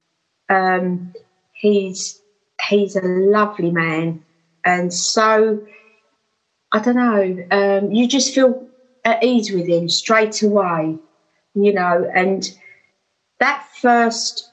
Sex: female